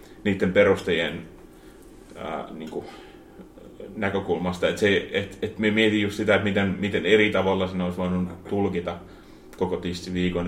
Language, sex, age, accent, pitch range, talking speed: Finnish, male, 30-49, native, 90-95 Hz, 120 wpm